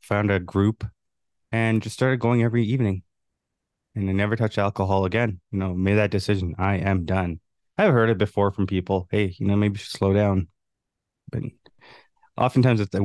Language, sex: English, male